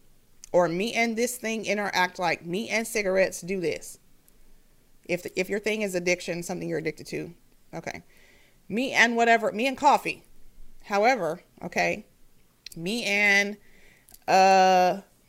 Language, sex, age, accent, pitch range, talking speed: English, female, 30-49, American, 175-230 Hz, 135 wpm